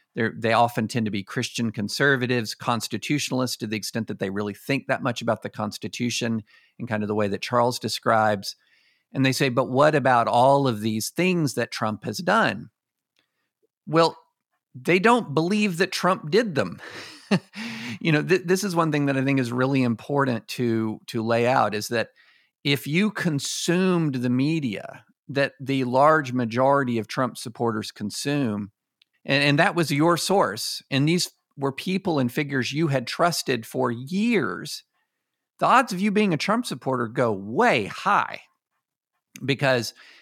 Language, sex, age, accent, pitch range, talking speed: English, male, 50-69, American, 120-165 Hz, 165 wpm